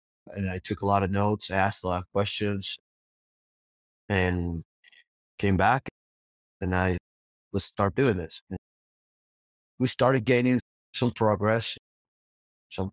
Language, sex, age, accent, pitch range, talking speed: English, male, 20-39, American, 85-100 Hz, 130 wpm